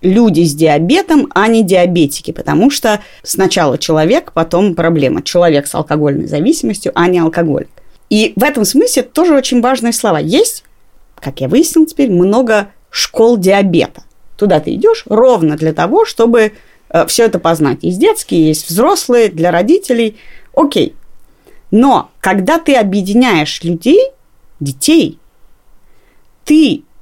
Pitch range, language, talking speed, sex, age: 170-250 Hz, Russian, 130 wpm, female, 30-49